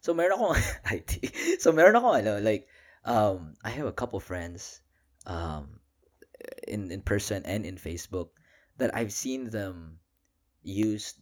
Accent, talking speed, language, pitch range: native, 135 wpm, Filipino, 85-110 Hz